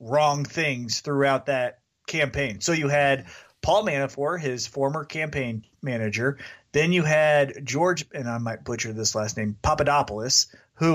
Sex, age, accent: male, 30-49, American